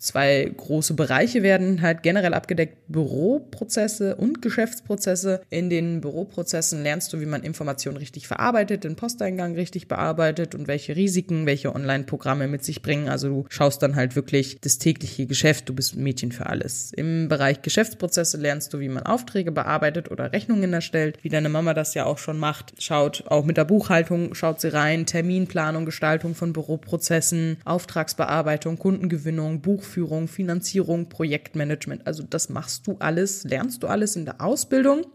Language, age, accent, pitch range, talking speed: German, 20-39, German, 145-185 Hz, 165 wpm